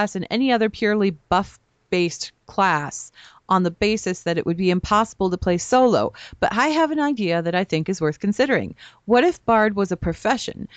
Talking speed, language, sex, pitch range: 195 wpm, English, female, 165-210 Hz